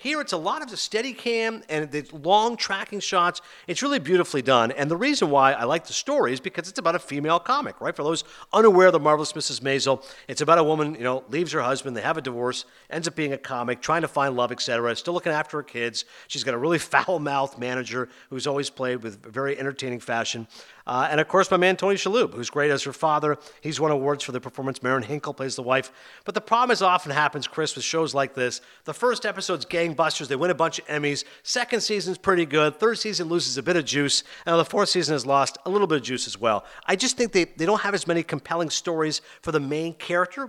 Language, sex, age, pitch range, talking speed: English, male, 50-69, 135-180 Hz, 245 wpm